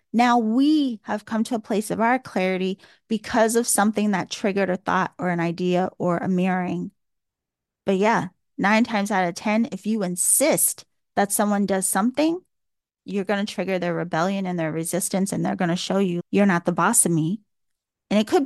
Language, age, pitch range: English, 30-49, 195-245 Hz